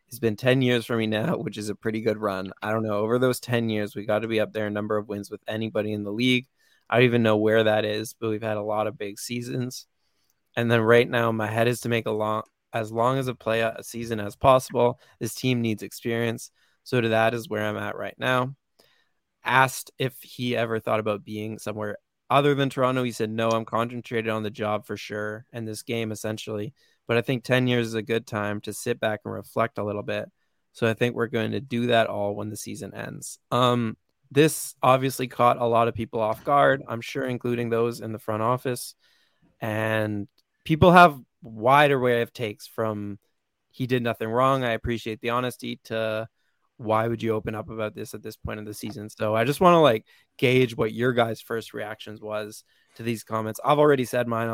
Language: English